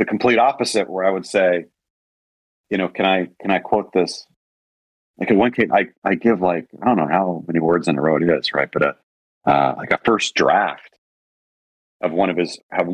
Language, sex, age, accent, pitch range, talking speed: English, male, 40-59, American, 80-110 Hz, 220 wpm